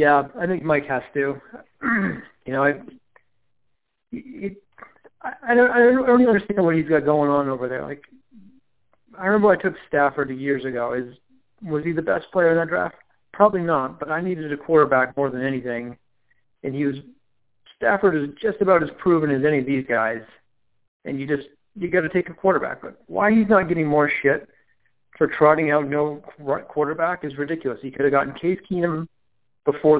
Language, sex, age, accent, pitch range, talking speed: English, male, 40-59, American, 130-170 Hz, 190 wpm